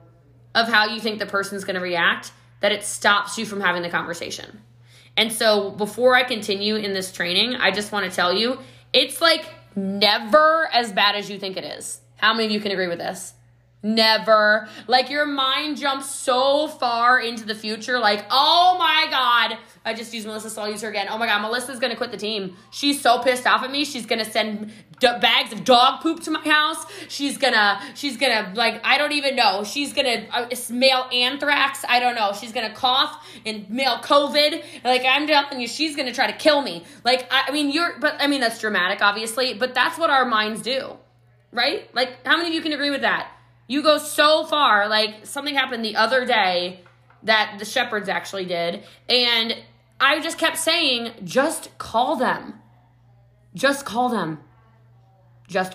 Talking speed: 205 wpm